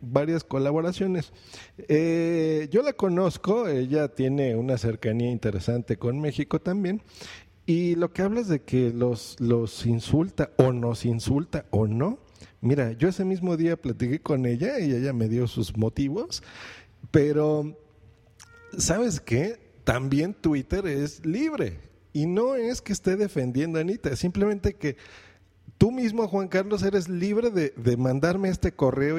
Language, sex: Spanish, male